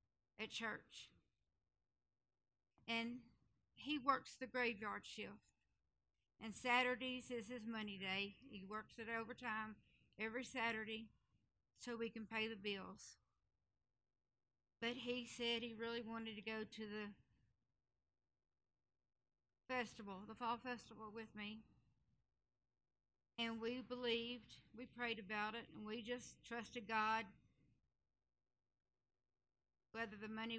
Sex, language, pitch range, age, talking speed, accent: female, English, 220-245 Hz, 60-79, 110 wpm, American